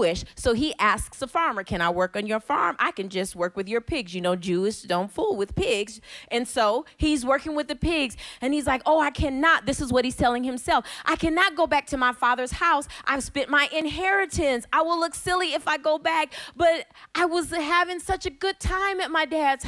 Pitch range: 200-330 Hz